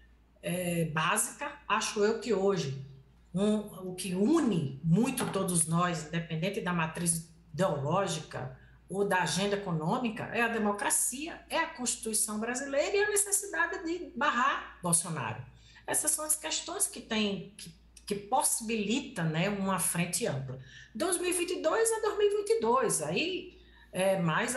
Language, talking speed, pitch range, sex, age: Portuguese, 130 wpm, 175-275 Hz, female, 50-69